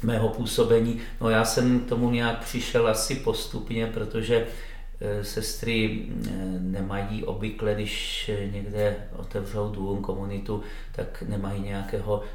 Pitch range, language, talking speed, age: 100-105 Hz, Czech, 110 wpm, 40-59